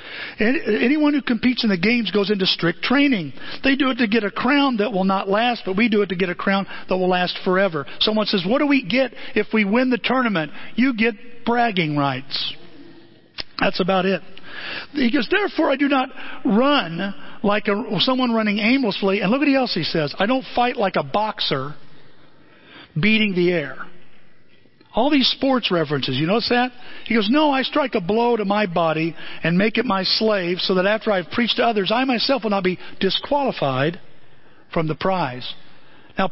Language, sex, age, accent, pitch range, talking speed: English, male, 50-69, American, 170-240 Hz, 195 wpm